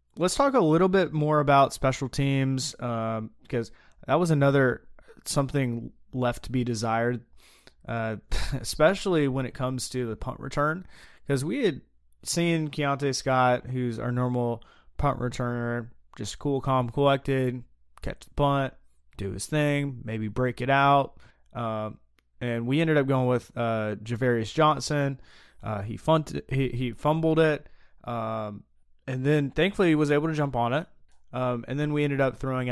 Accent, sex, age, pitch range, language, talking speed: American, male, 20-39, 115-140 Hz, English, 160 wpm